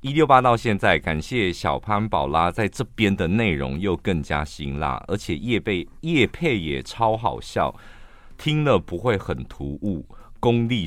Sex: male